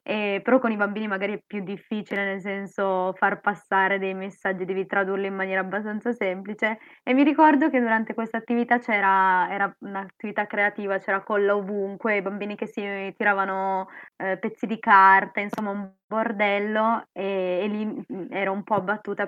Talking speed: 165 wpm